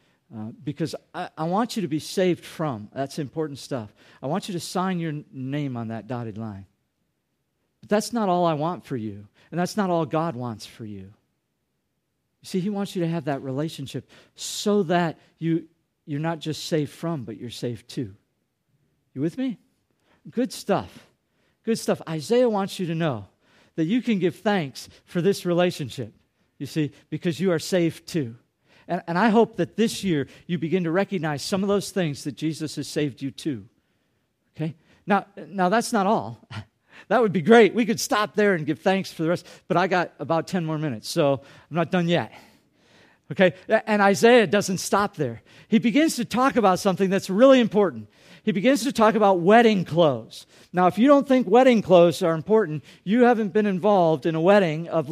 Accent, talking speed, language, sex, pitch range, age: American, 195 wpm, English, male, 145-200 Hz, 50-69